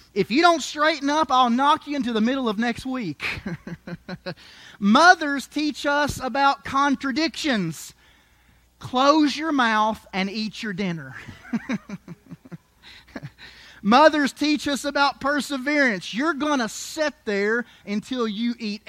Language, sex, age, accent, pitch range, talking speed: English, male, 30-49, American, 190-285 Hz, 125 wpm